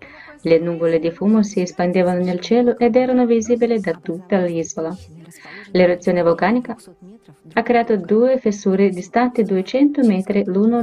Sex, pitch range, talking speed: female, 170-225 Hz, 135 wpm